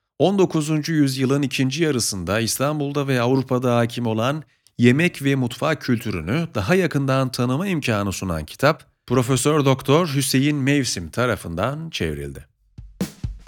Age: 40-59